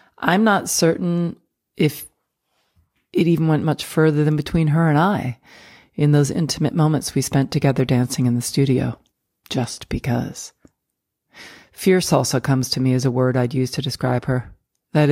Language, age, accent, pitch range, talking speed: English, 40-59, American, 130-175 Hz, 165 wpm